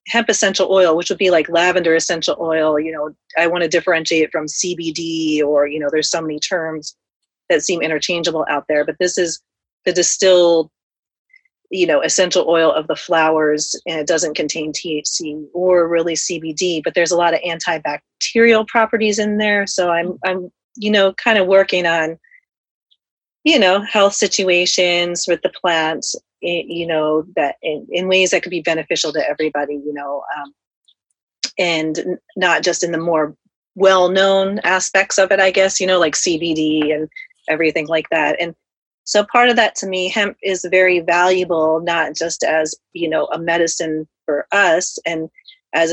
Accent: American